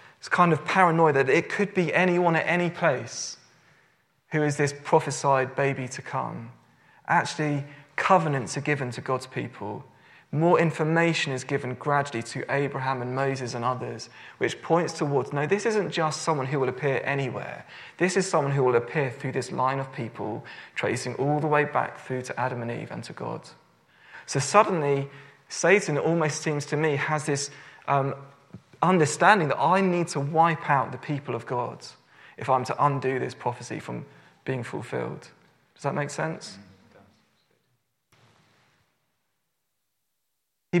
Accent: British